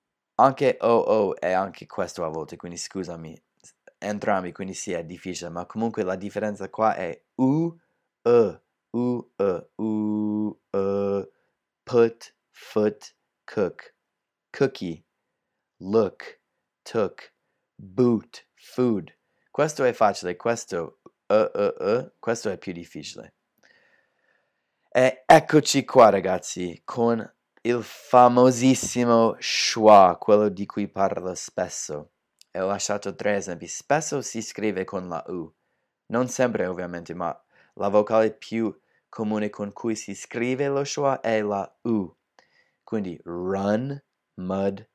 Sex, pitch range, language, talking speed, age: male, 95-120 Hz, Italian, 120 wpm, 30-49